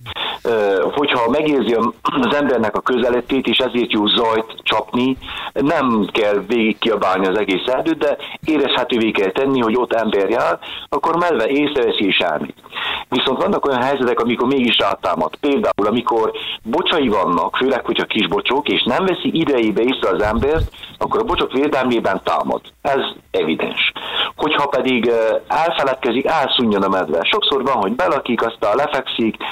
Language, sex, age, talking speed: Hungarian, male, 50-69, 145 wpm